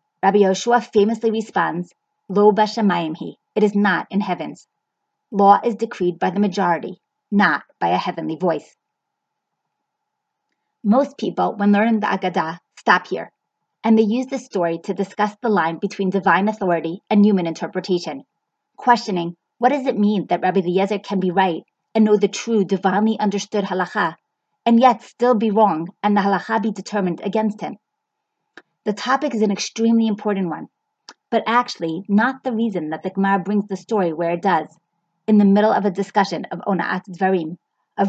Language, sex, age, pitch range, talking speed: English, female, 30-49, 185-230 Hz, 165 wpm